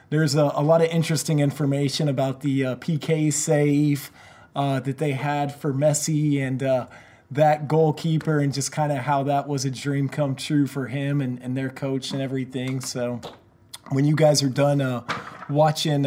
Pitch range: 135-150 Hz